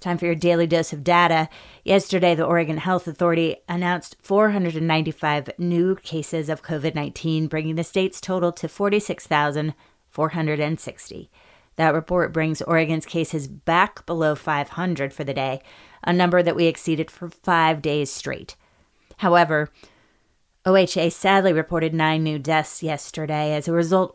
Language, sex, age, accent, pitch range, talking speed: English, female, 30-49, American, 150-175 Hz, 135 wpm